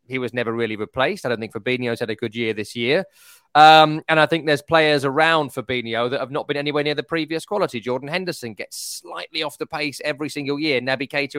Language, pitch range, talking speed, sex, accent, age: English, 120-155 Hz, 230 wpm, male, British, 20-39